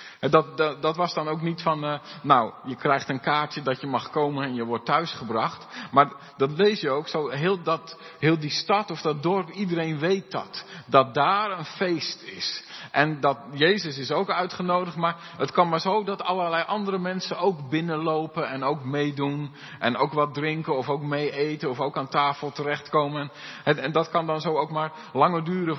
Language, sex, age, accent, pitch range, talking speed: Dutch, male, 50-69, Dutch, 140-180 Hz, 200 wpm